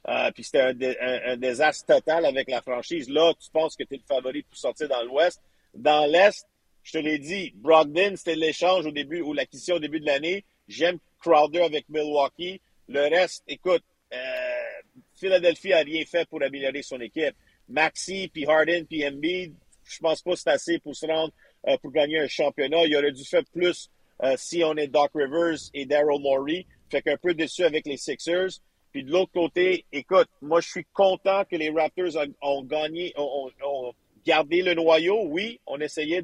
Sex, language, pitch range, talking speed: male, French, 150-185 Hz, 195 wpm